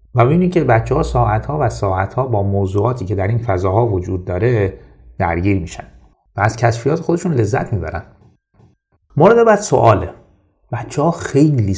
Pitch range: 95-130 Hz